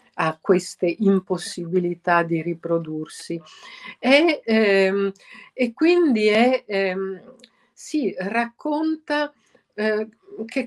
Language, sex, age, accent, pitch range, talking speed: Italian, female, 50-69, native, 175-225 Hz, 75 wpm